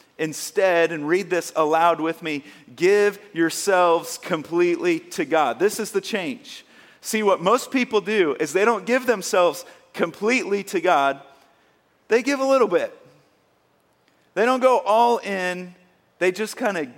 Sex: male